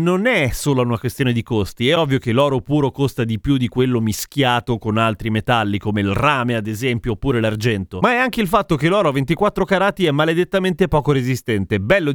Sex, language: male, Italian